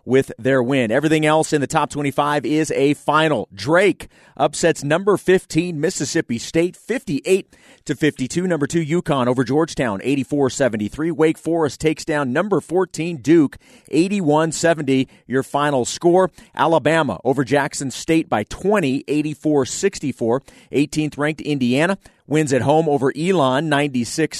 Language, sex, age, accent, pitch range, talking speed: English, male, 30-49, American, 135-165 Hz, 140 wpm